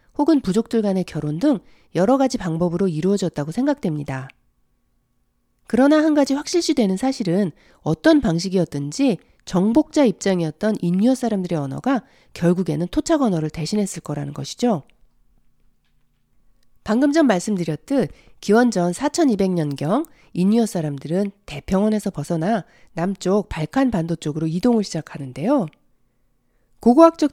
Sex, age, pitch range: female, 40-59, 160-245 Hz